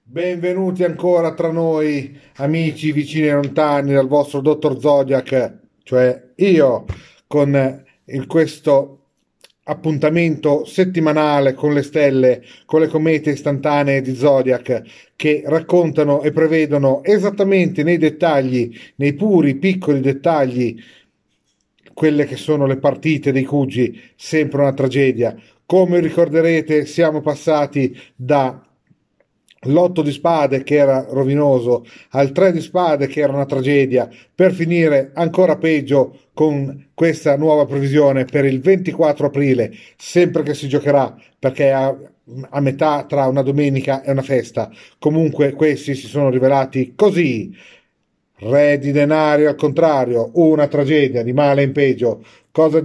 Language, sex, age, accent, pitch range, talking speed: Italian, male, 40-59, native, 135-155 Hz, 125 wpm